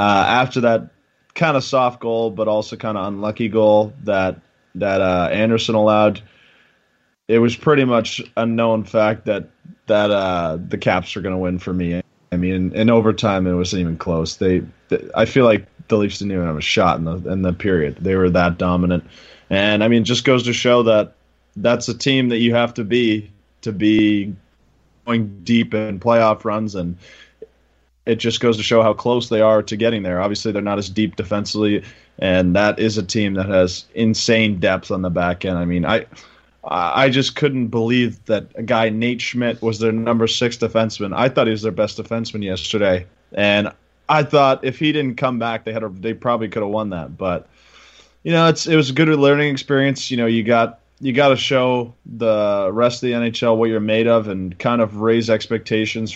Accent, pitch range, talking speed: American, 95-120 Hz, 210 wpm